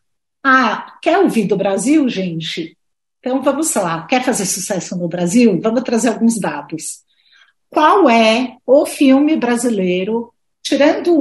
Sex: female